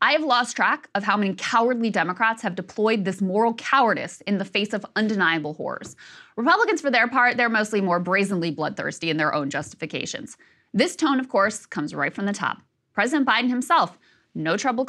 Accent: American